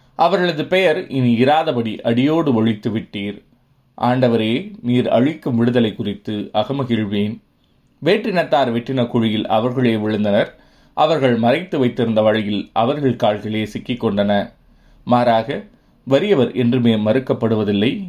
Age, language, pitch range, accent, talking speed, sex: 30-49, Tamil, 110-130 Hz, native, 95 wpm, male